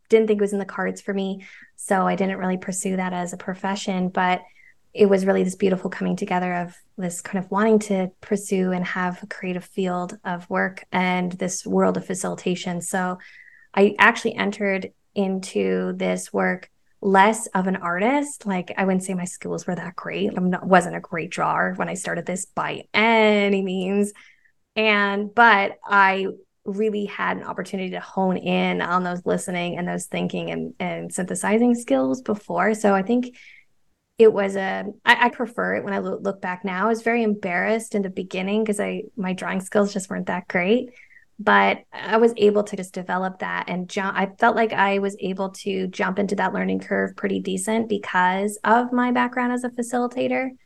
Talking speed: 190 wpm